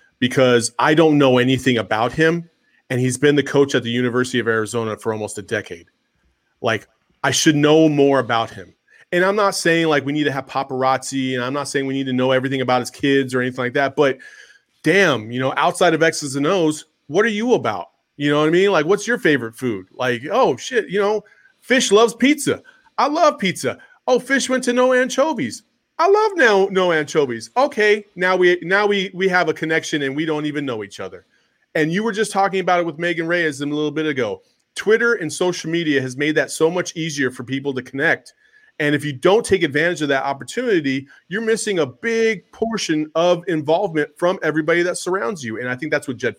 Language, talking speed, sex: English, 220 wpm, male